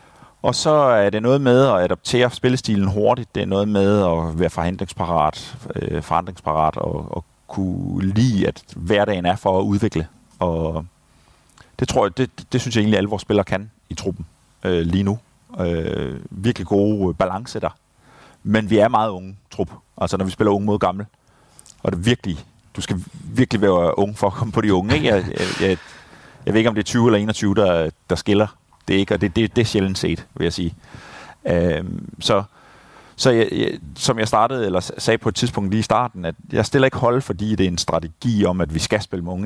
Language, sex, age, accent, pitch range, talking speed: Danish, male, 30-49, native, 90-115 Hz, 215 wpm